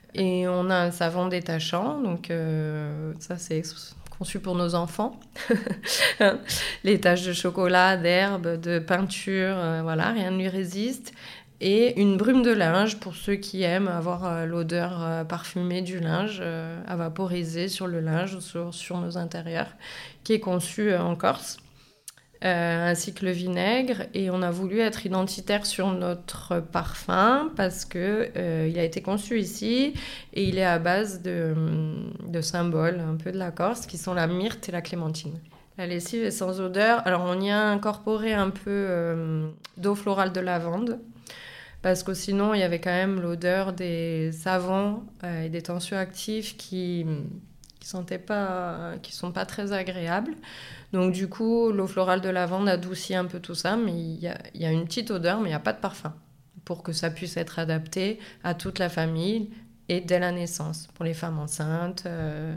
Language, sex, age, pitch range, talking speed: French, female, 20-39, 170-195 Hz, 175 wpm